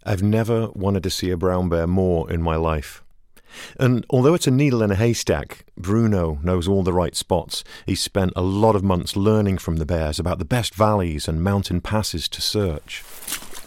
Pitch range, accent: 85-110 Hz, British